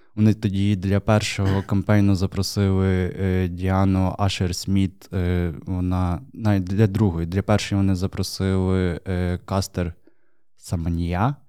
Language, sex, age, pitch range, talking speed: Ukrainian, male, 20-39, 95-105 Hz, 95 wpm